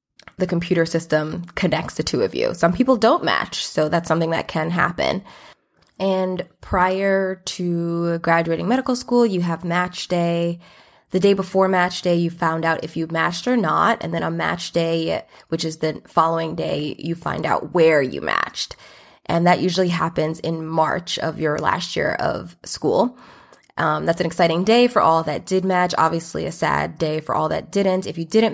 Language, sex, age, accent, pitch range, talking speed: English, female, 20-39, American, 160-185 Hz, 190 wpm